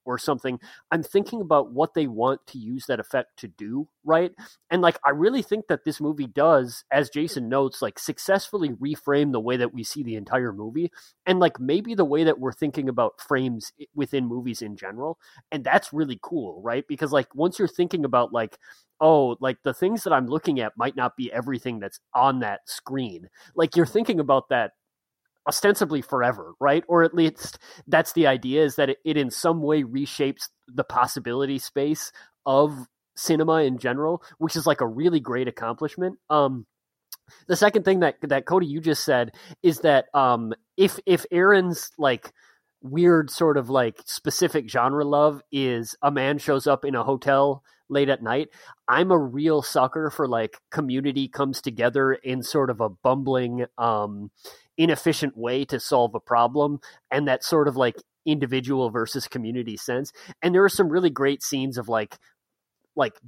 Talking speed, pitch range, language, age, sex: 180 wpm, 125-160 Hz, English, 30-49, male